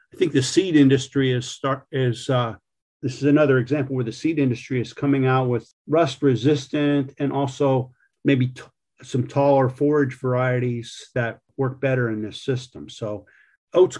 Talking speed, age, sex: 165 wpm, 50-69, male